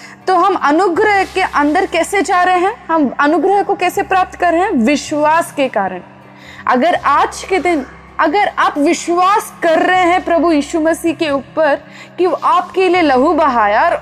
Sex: female